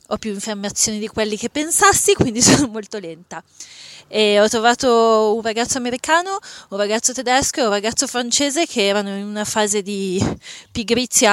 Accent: native